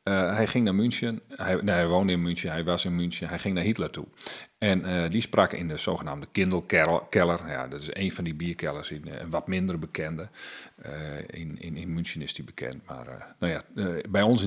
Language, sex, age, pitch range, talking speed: Dutch, male, 40-59, 85-100 Hz, 230 wpm